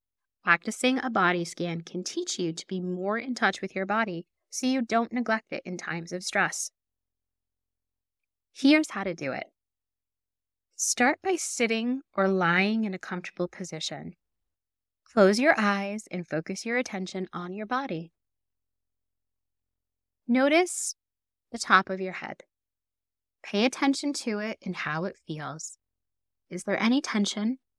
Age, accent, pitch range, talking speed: 20-39, American, 150-225 Hz, 145 wpm